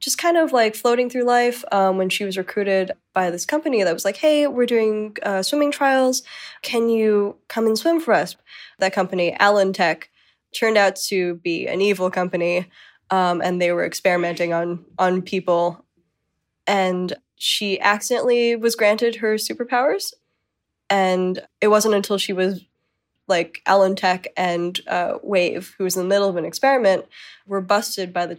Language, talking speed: English, 165 wpm